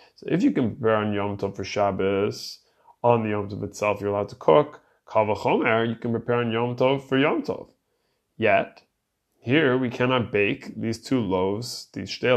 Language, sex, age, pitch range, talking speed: English, male, 20-39, 105-135 Hz, 190 wpm